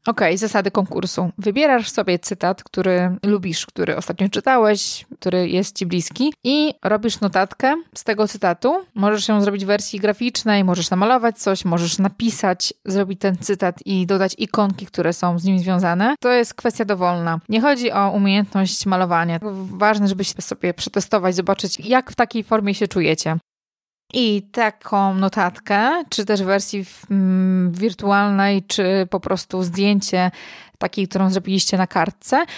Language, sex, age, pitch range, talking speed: Polish, female, 20-39, 185-215 Hz, 150 wpm